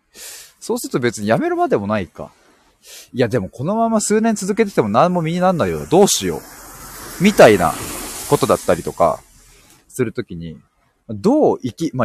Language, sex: Japanese, male